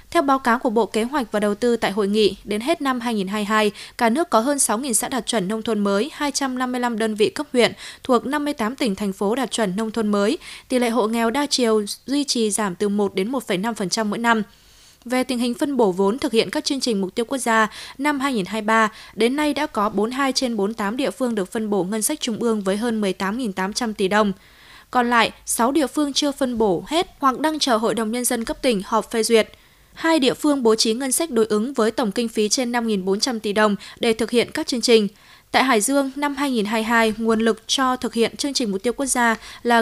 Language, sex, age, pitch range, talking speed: Vietnamese, female, 20-39, 215-265 Hz, 235 wpm